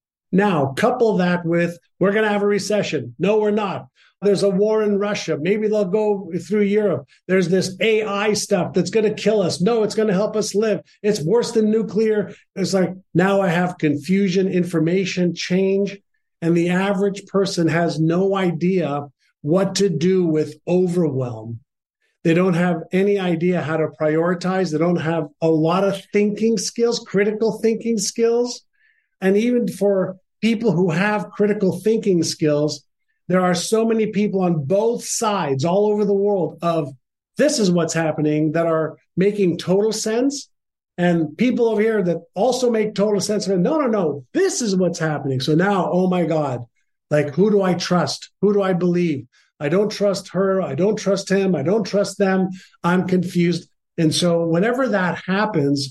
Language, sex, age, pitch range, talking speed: English, male, 50-69, 170-210 Hz, 175 wpm